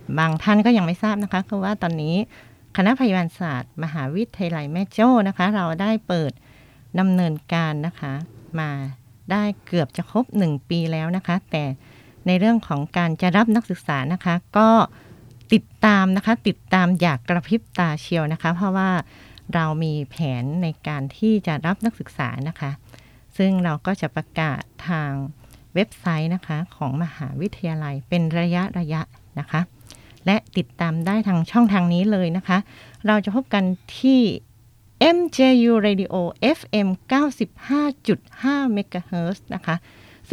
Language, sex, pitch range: Thai, female, 155-215 Hz